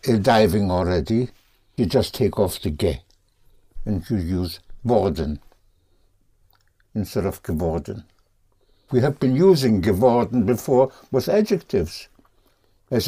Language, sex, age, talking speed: English, male, 60-79, 115 wpm